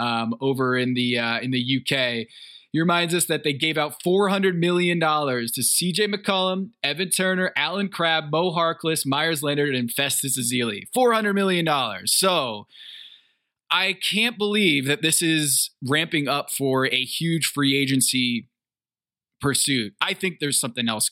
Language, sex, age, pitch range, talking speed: English, male, 20-39, 130-175 Hz, 150 wpm